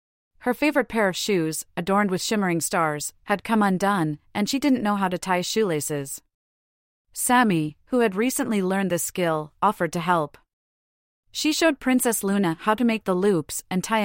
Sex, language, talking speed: female, English, 175 wpm